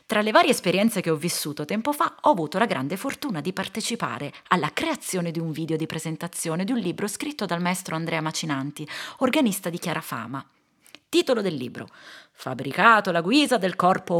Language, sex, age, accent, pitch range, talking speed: Italian, female, 30-49, native, 160-240 Hz, 180 wpm